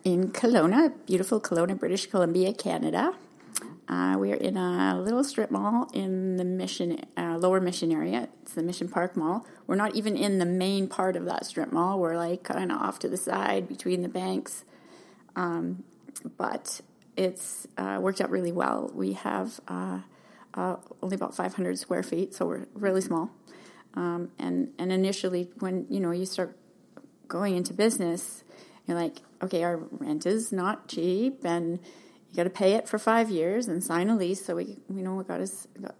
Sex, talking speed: female, 185 wpm